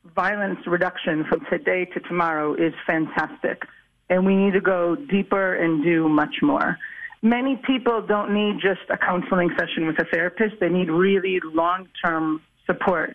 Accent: American